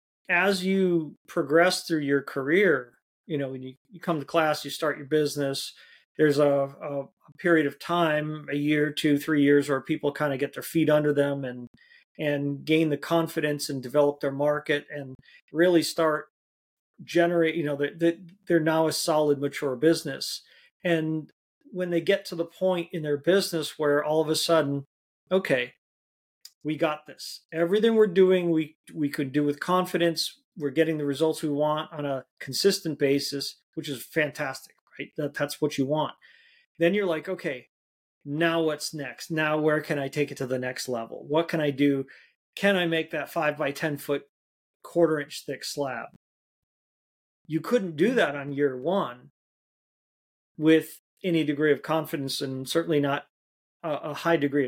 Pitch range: 140-165 Hz